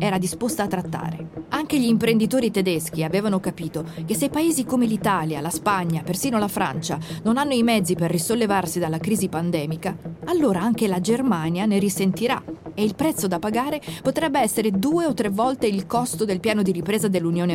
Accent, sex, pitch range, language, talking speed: native, female, 170-235 Hz, Italian, 180 wpm